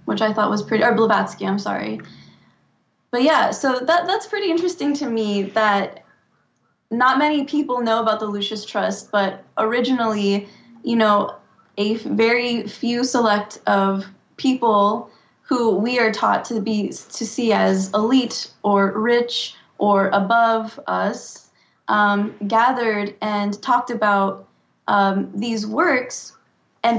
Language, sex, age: English, female, 20-39